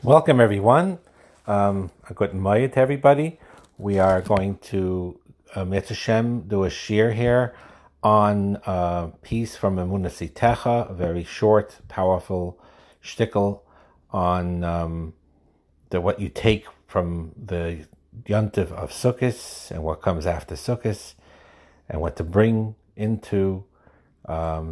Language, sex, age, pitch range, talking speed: English, male, 60-79, 80-100 Hz, 115 wpm